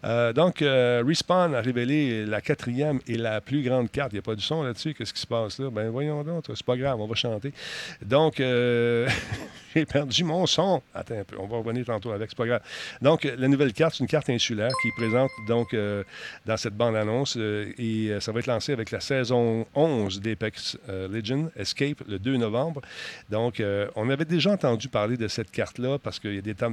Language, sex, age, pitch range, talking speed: French, male, 50-69, 110-135 Hz, 225 wpm